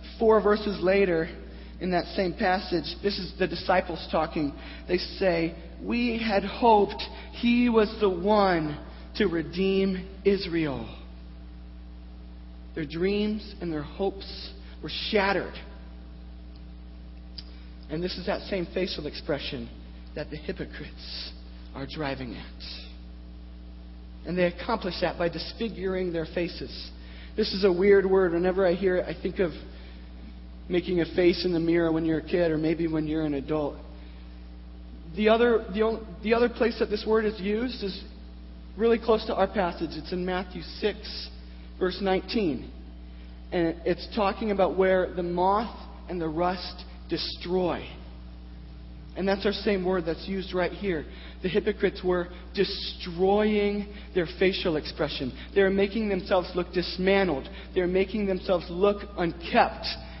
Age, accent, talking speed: 40-59, American, 140 wpm